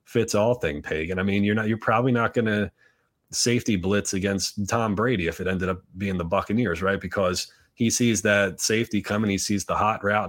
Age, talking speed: 30-49, 210 wpm